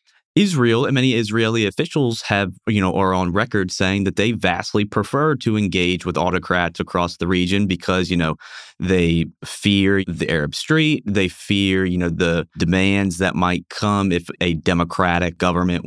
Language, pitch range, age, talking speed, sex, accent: English, 85-105 Hz, 20-39, 165 wpm, male, American